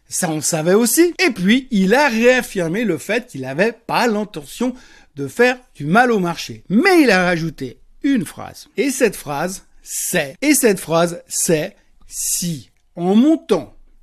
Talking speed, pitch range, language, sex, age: 165 wpm, 185-280 Hz, French, male, 60-79